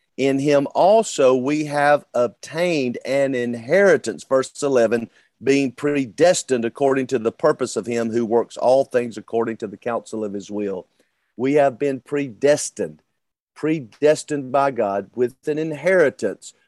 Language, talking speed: English, 140 wpm